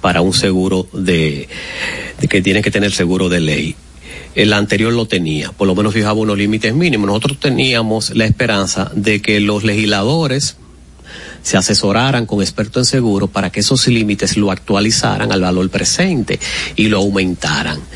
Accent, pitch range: American, 100-120 Hz